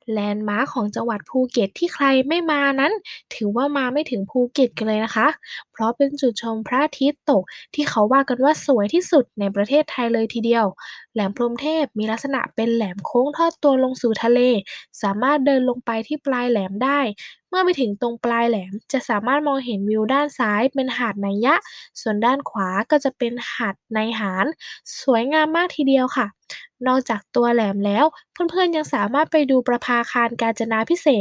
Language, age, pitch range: Thai, 10-29, 225-280 Hz